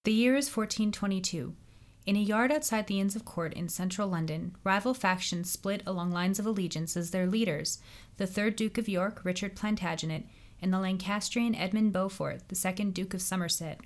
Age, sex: 30-49, female